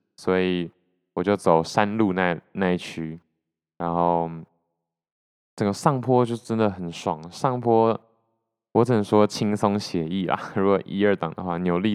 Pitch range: 90-110 Hz